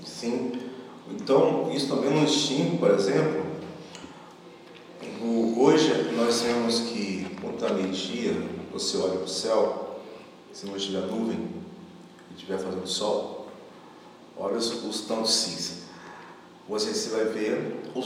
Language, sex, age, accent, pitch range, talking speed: Portuguese, male, 40-59, Brazilian, 100-135 Hz, 125 wpm